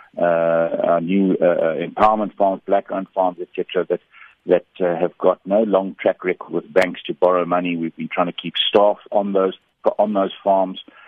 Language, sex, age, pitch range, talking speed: English, male, 60-79, 90-100 Hz, 190 wpm